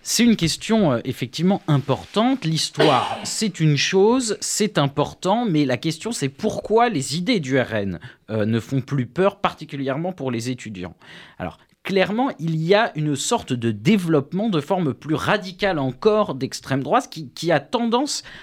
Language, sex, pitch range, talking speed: French, male, 125-190 Hz, 165 wpm